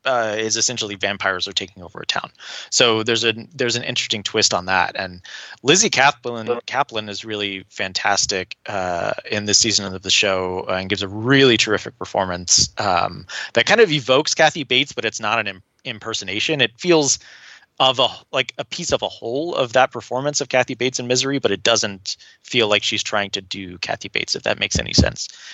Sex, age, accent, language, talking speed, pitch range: male, 20-39, American, English, 195 wpm, 105-130 Hz